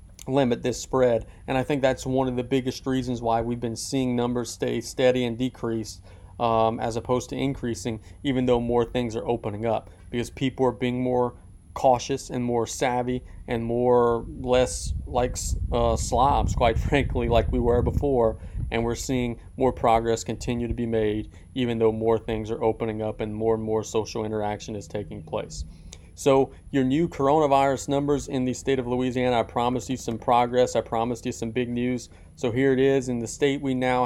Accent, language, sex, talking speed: American, English, male, 190 wpm